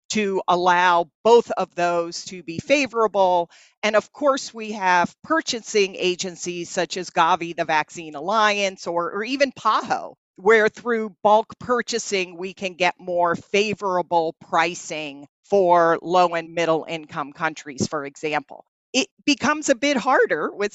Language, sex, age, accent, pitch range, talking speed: English, female, 40-59, American, 165-210 Hz, 140 wpm